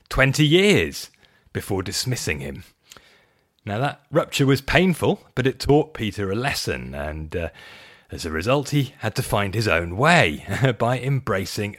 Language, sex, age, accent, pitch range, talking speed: English, male, 30-49, British, 100-145 Hz, 155 wpm